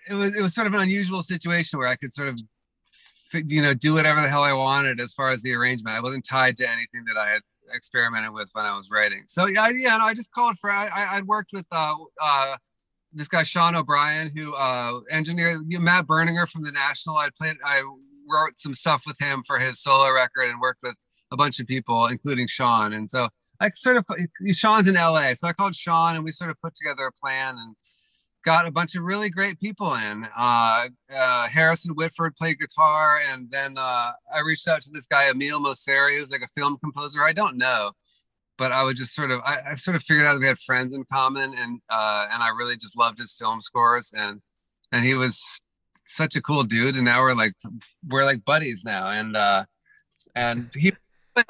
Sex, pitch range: male, 125-170 Hz